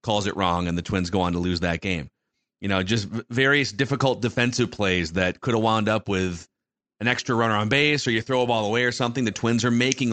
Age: 30-49